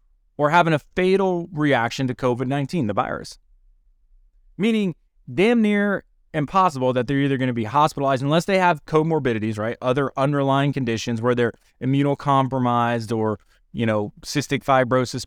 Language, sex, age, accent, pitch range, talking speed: English, male, 30-49, American, 105-165 Hz, 145 wpm